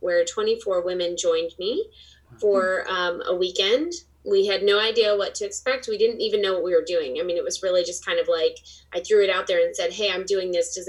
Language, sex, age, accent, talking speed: English, female, 20-39, American, 250 wpm